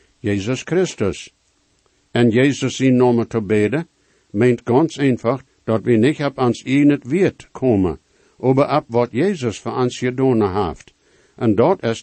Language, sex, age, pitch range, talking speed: English, male, 60-79, 110-140 Hz, 155 wpm